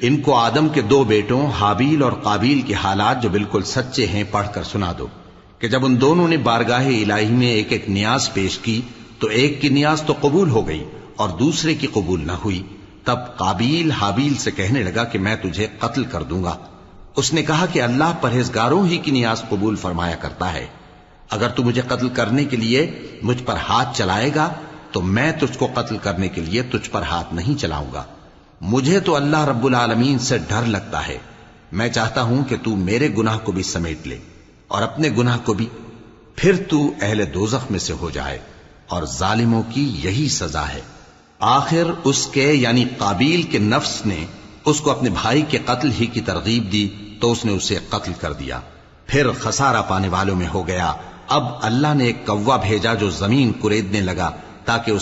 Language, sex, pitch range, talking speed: Urdu, male, 95-130 Hz, 195 wpm